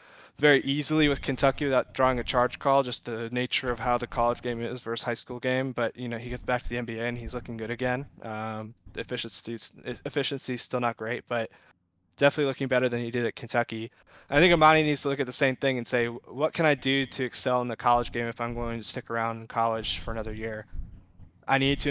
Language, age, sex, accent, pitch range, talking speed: English, 20-39, male, American, 115-130 Hz, 235 wpm